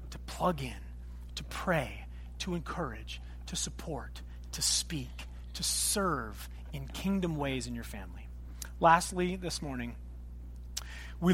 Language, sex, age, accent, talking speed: English, male, 30-49, American, 115 wpm